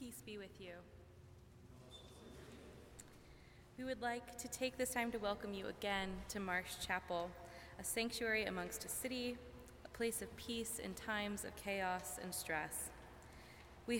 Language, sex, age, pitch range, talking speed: English, female, 20-39, 175-220 Hz, 145 wpm